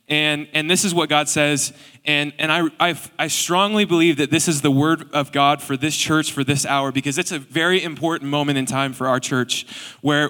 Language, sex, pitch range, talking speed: English, male, 150-170 Hz, 225 wpm